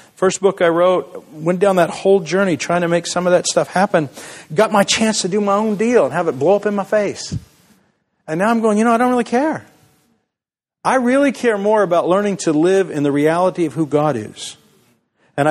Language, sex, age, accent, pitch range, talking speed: English, male, 50-69, American, 145-195 Hz, 230 wpm